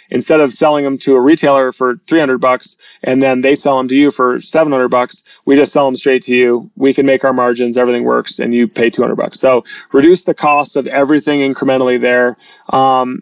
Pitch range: 130-150 Hz